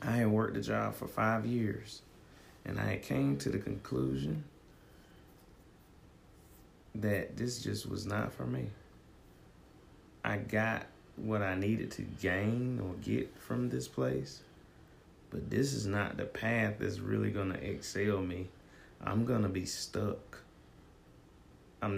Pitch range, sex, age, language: 85-105 Hz, male, 30-49, English